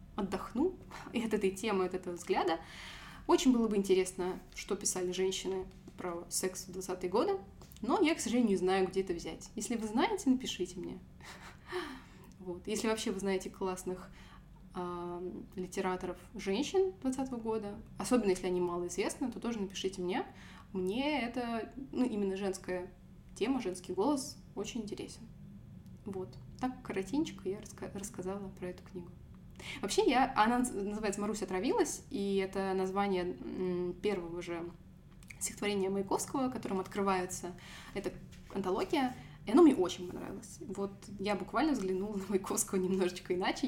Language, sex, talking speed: Russian, female, 140 wpm